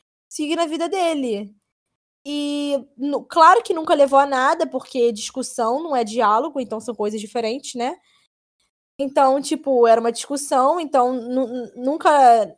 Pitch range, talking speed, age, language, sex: 240-315 Hz, 135 wpm, 10-29, Portuguese, female